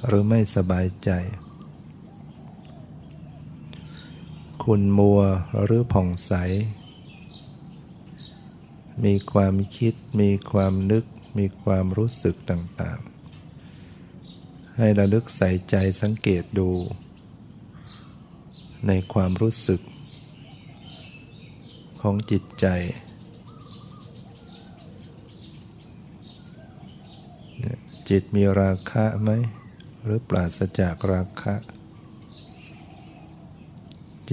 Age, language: 60-79, Thai